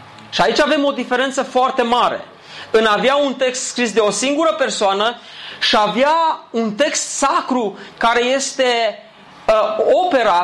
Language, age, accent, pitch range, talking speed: Romanian, 30-49, native, 200-275 Hz, 145 wpm